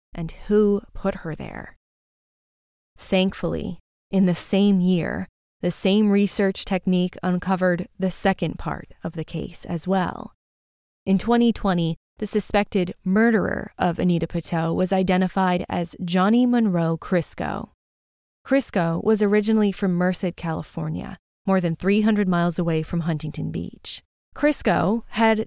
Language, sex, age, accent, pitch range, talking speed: English, female, 20-39, American, 170-205 Hz, 125 wpm